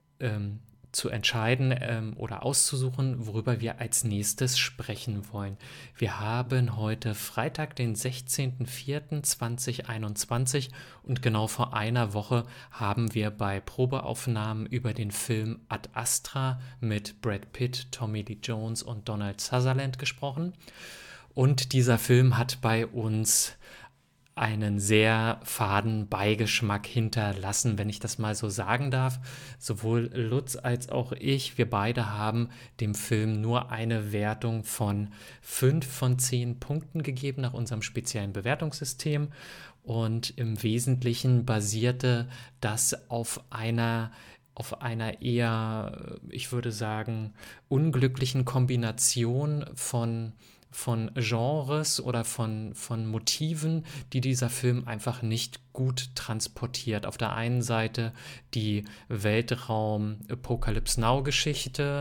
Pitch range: 110-130 Hz